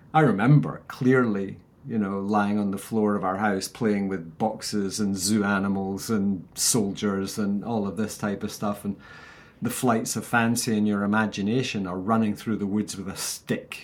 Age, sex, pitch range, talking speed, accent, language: 40-59, male, 100-115 Hz, 185 wpm, British, English